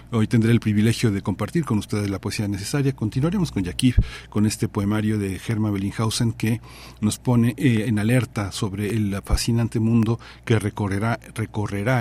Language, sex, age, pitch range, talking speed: Spanish, male, 40-59, 105-125 Hz, 165 wpm